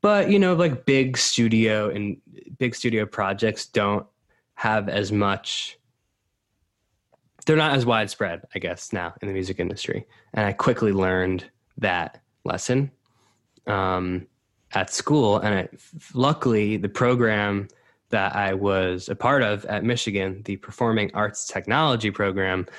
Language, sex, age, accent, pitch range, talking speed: English, male, 20-39, American, 95-115 Hz, 135 wpm